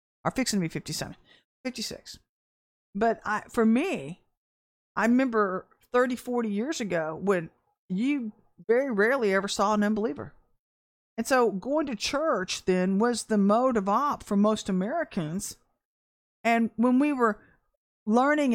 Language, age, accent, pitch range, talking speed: English, 50-69, American, 200-255 Hz, 140 wpm